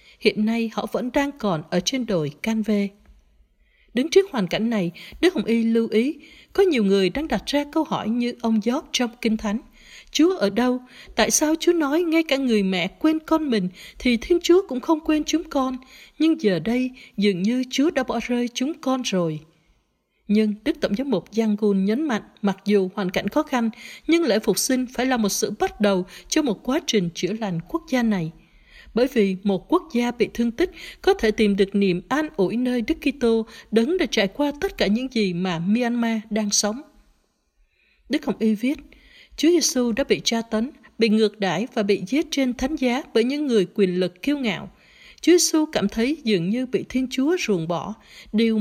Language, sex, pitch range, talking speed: Vietnamese, female, 205-280 Hz, 210 wpm